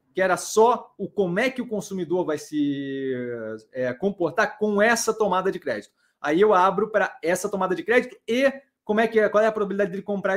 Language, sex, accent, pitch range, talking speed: Portuguese, male, Brazilian, 165-220 Hz, 220 wpm